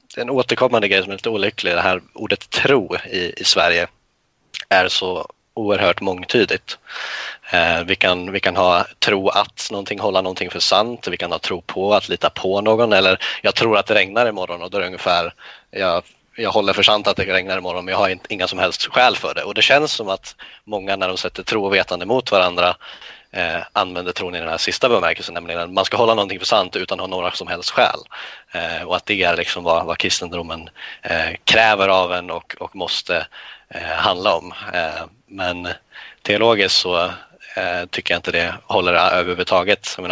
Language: Swedish